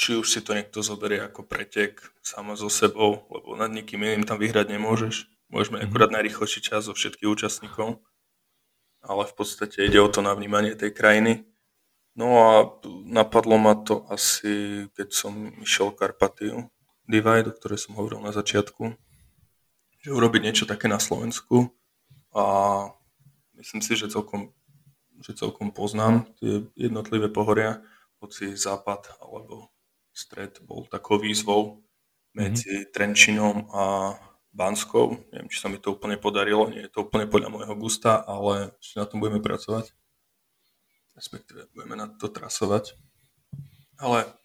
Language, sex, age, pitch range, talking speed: Slovak, male, 20-39, 105-115 Hz, 145 wpm